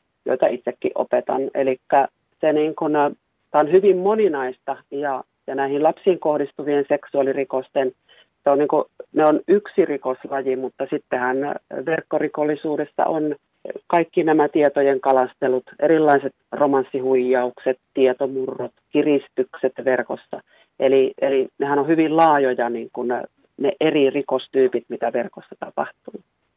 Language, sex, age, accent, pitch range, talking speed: Finnish, female, 40-59, native, 130-150 Hz, 115 wpm